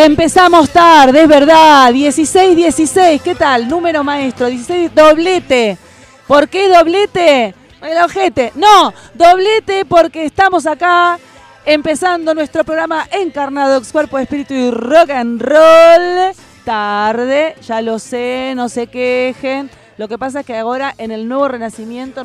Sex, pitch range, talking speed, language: female, 230-315 Hz, 130 wpm, Spanish